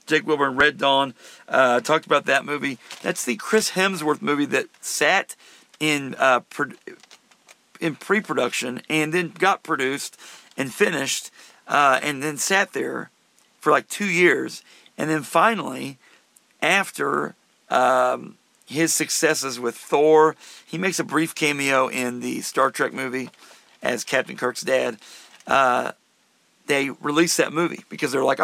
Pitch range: 135-185 Hz